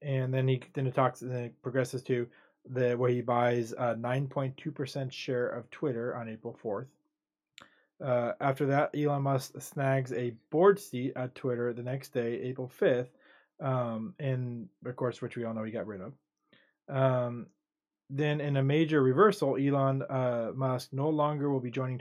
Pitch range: 125-145 Hz